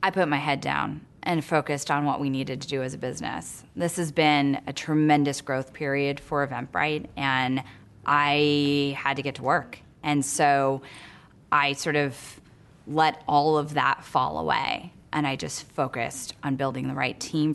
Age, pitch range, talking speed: 20-39, 140-170 Hz, 180 wpm